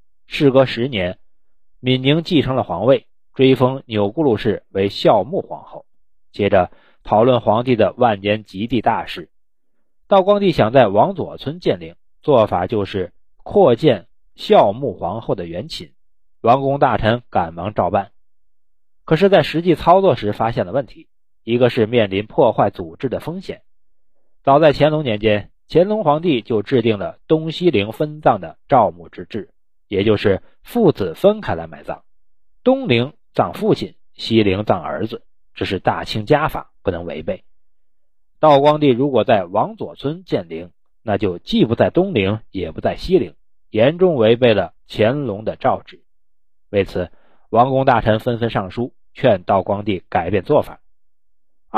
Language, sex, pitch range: Chinese, male, 100-145 Hz